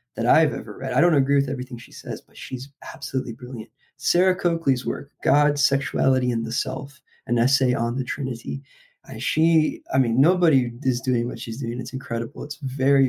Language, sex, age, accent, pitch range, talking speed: English, male, 20-39, American, 130-165 Hz, 195 wpm